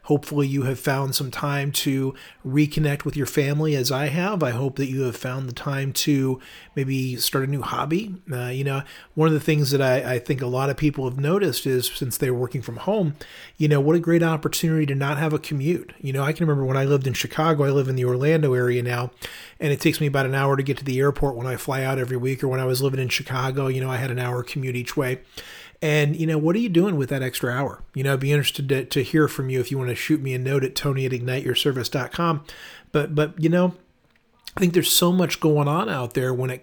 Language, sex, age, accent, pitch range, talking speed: English, male, 40-59, American, 130-150 Hz, 265 wpm